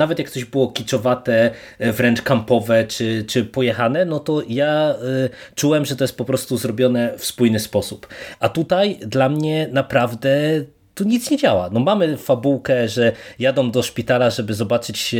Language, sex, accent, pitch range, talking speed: Polish, male, native, 115-140 Hz, 160 wpm